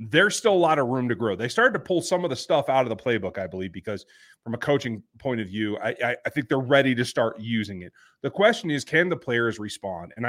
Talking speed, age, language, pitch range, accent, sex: 275 wpm, 30-49, English, 120-175 Hz, American, male